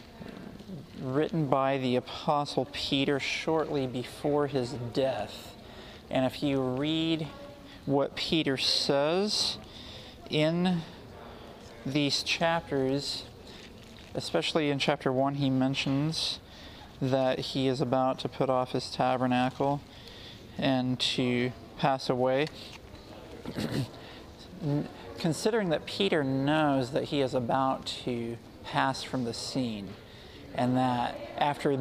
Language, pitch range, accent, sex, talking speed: English, 125-145 Hz, American, male, 100 wpm